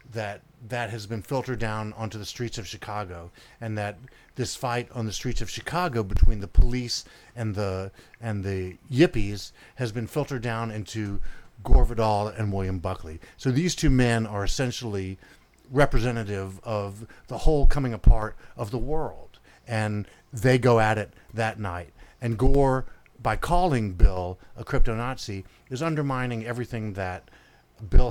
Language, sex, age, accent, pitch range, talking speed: English, male, 50-69, American, 100-125 Hz, 155 wpm